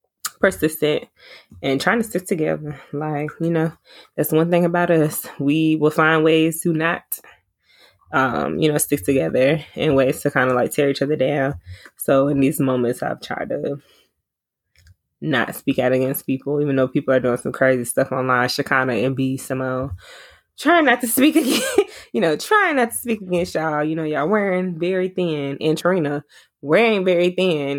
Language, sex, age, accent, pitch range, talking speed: English, female, 20-39, American, 135-160 Hz, 180 wpm